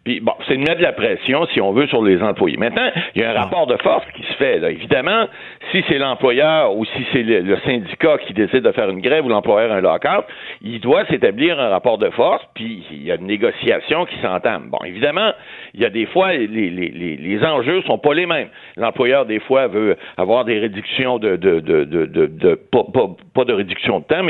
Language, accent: French, French